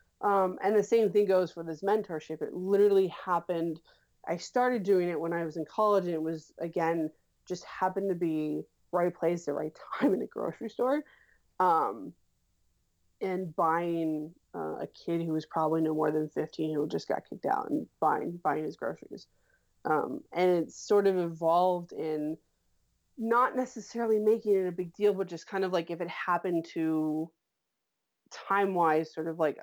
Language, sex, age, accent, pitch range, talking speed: English, female, 20-39, American, 155-190 Hz, 180 wpm